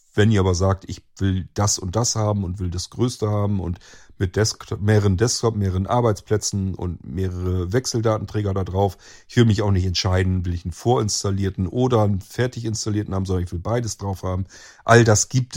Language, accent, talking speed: German, German, 195 wpm